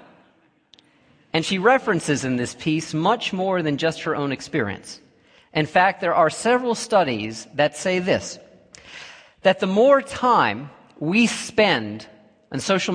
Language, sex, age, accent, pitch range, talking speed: English, male, 40-59, American, 115-190 Hz, 140 wpm